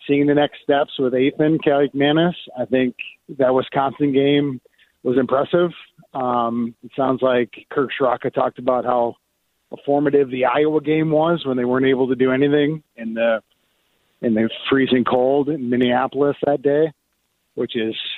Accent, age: American, 30-49